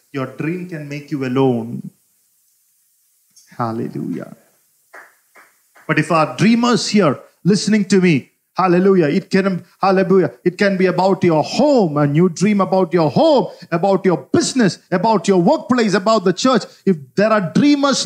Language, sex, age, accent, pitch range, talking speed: English, male, 50-69, Indian, 195-245 Hz, 145 wpm